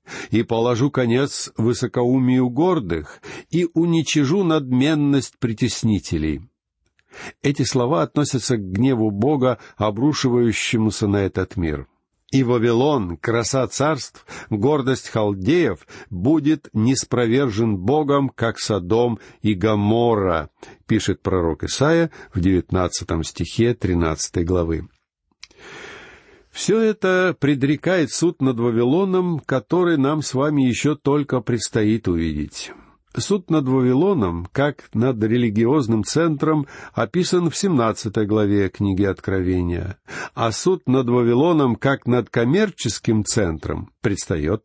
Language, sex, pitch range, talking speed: Russian, male, 105-145 Hz, 100 wpm